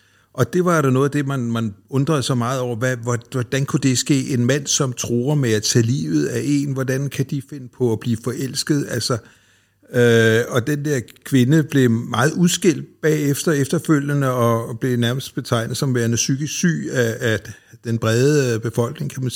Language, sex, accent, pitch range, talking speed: English, male, Danish, 115-145 Hz, 190 wpm